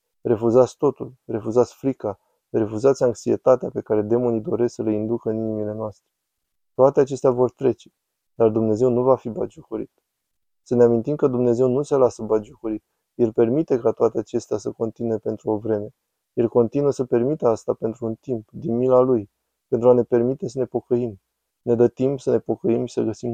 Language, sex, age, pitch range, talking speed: Romanian, male, 20-39, 110-130 Hz, 185 wpm